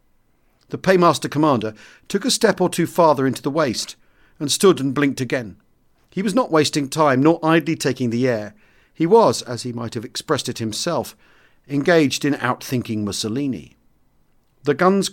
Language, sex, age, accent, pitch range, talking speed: English, male, 40-59, British, 115-155 Hz, 165 wpm